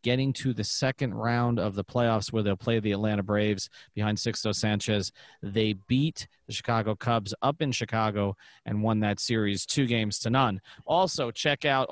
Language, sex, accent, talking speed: English, male, American, 180 wpm